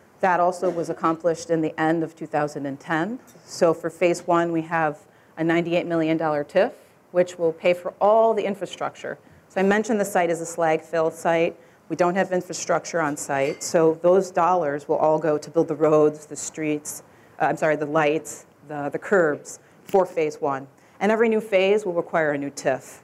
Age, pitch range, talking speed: 40-59, 155-180 Hz, 190 wpm